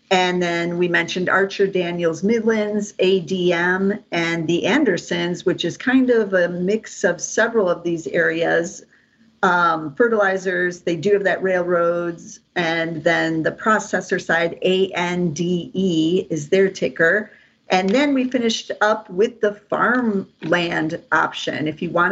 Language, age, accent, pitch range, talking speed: English, 50-69, American, 175-210 Hz, 135 wpm